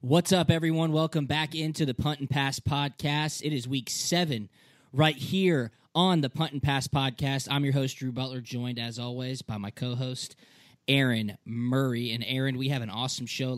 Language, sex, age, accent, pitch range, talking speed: English, male, 20-39, American, 125-150 Hz, 190 wpm